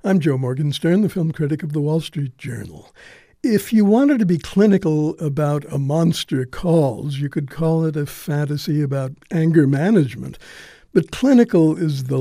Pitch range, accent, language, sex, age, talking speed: 140-175 Hz, American, English, male, 60-79, 165 wpm